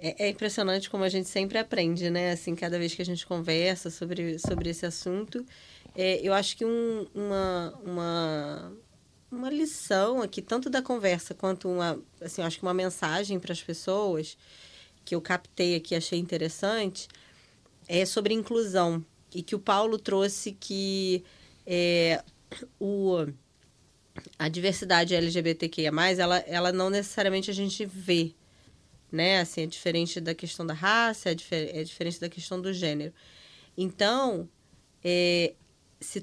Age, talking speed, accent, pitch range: 20-39, 145 wpm, Brazilian, 175-215 Hz